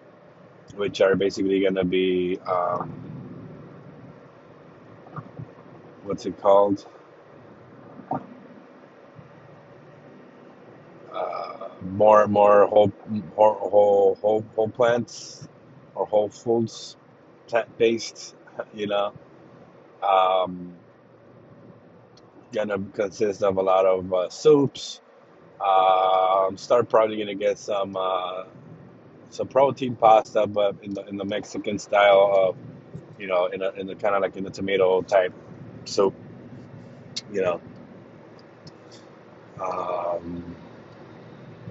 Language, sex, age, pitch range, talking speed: English, male, 30-49, 95-105 Hz, 100 wpm